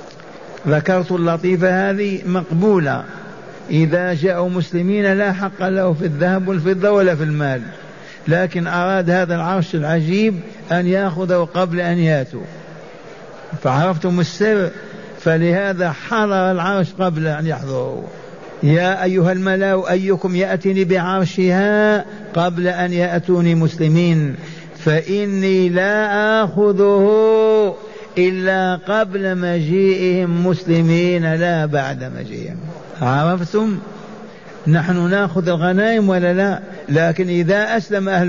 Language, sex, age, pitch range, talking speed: Arabic, male, 50-69, 170-195 Hz, 100 wpm